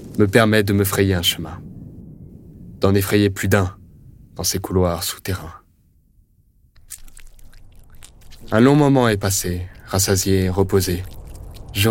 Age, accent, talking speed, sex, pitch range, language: 20-39, French, 115 wpm, male, 95-105 Hz, French